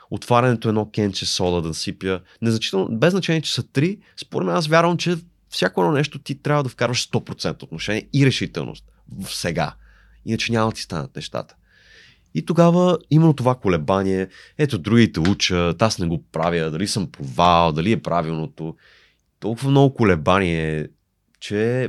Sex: male